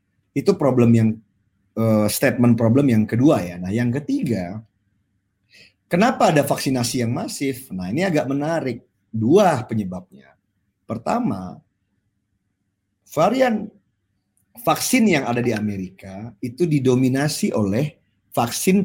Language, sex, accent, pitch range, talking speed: Indonesian, male, native, 105-145 Hz, 110 wpm